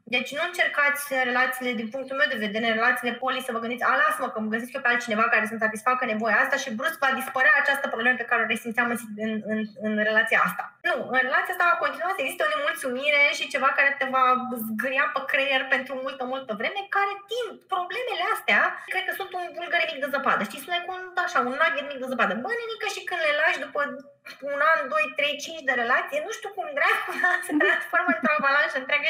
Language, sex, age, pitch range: Romanian, female, 20-39, 225-300 Hz